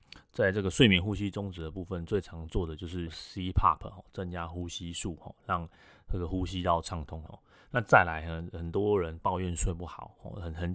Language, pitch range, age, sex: Chinese, 85-95 Hz, 30-49, male